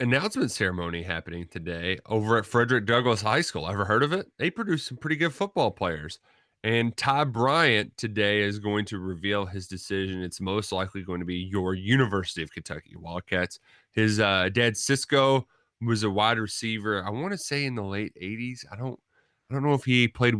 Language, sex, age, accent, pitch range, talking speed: English, male, 30-49, American, 100-120 Hz, 195 wpm